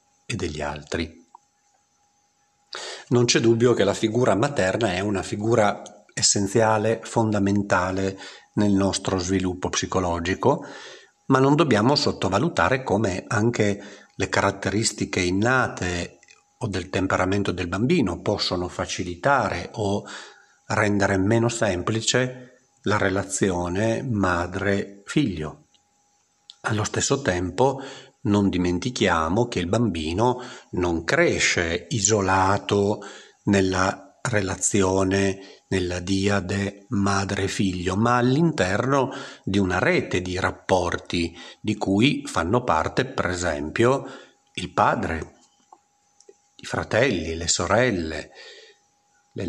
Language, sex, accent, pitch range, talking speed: Italian, male, native, 95-120 Hz, 95 wpm